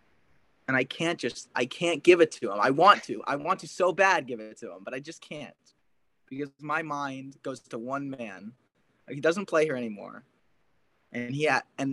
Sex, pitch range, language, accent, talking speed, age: male, 130-195 Hz, English, American, 195 wpm, 20-39